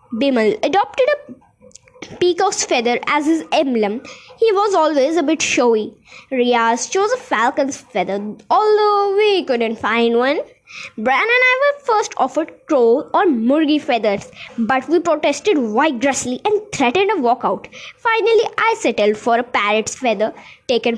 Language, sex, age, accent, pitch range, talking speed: Hindi, female, 20-39, native, 245-350 Hz, 145 wpm